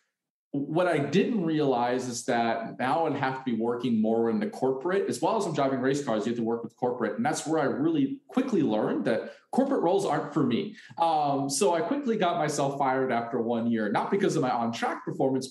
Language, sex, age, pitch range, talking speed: English, male, 30-49, 120-160 Hz, 225 wpm